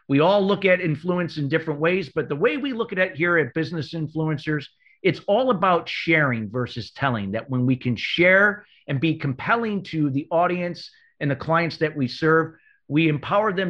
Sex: male